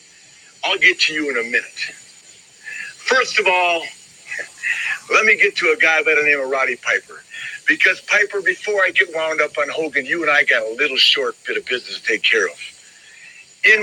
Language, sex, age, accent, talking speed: English, male, 60-79, American, 200 wpm